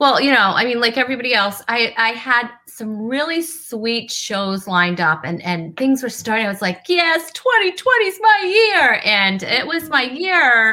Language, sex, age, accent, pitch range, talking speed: English, female, 30-49, American, 195-270 Hz, 195 wpm